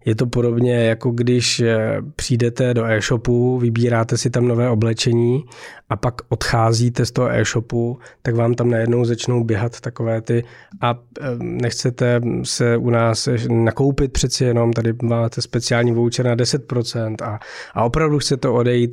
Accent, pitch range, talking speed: native, 110-120 Hz, 150 wpm